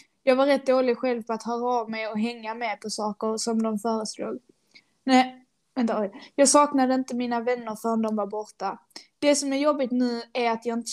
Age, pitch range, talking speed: 10-29, 220-245 Hz, 210 wpm